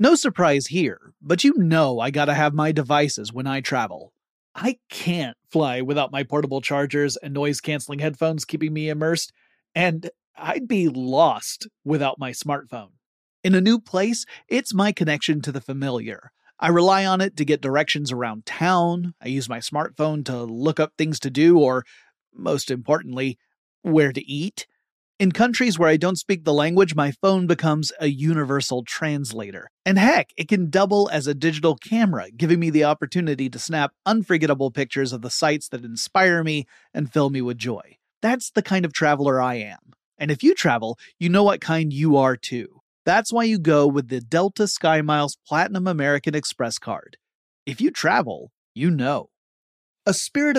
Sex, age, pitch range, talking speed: male, 30-49, 140-180 Hz, 175 wpm